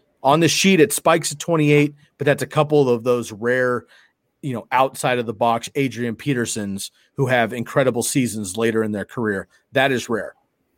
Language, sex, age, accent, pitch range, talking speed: English, male, 30-49, American, 115-140 Hz, 185 wpm